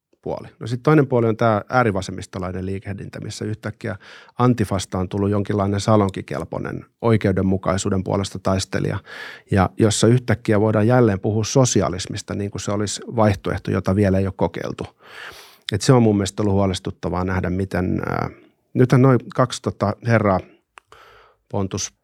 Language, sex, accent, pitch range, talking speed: Finnish, male, native, 95-115 Hz, 125 wpm